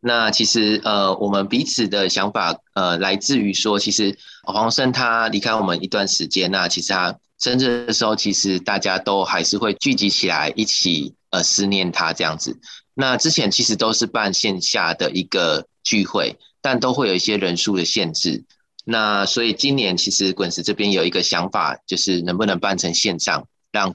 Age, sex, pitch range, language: 20-39, male, 95-115 Hz, Chinese